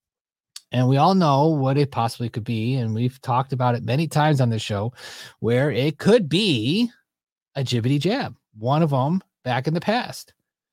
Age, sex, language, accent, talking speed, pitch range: 30-49, male, English, American, 185 wpm, 135-175 Hz